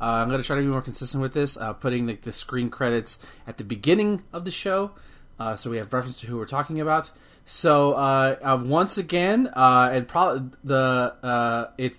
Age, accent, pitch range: 20-39, American, 120-150 Hz